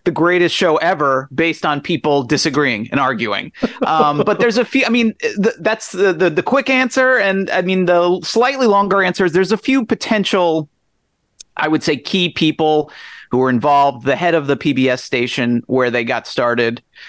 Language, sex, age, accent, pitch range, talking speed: English, male, 30-49, American, 140-190 Hz, 190 wpm